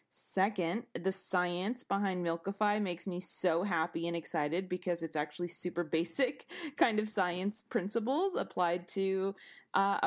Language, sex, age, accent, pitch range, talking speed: English, female, 20-39, American, 175-225 Hz, 135 wpm